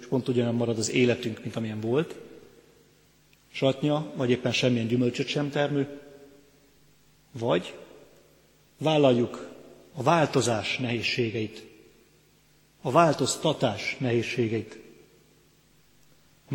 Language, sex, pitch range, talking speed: Hungarian, male, 120-135 Hz, 85 wpm